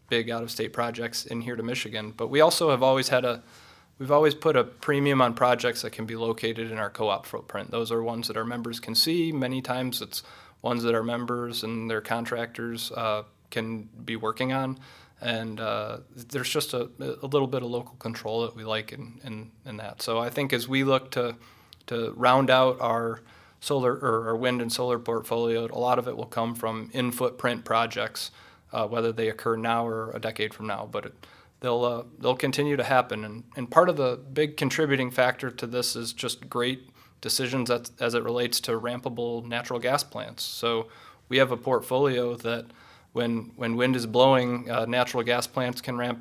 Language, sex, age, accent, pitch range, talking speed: English, male, 20-39, American, 115-125 Hz, 205 wpm